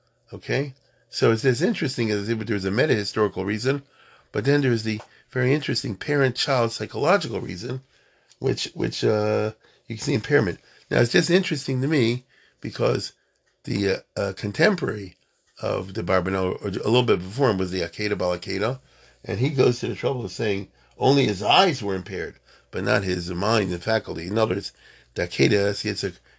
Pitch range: 95-130 Hz